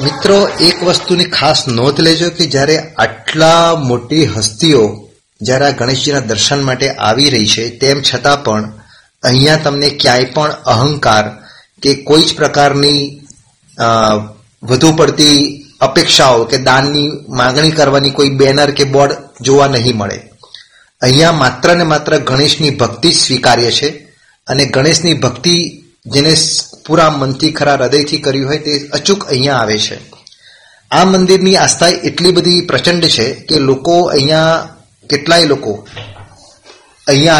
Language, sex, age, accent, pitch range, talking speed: Gujarati, male, 30-49, native, 130-155 Hz, 125 wpm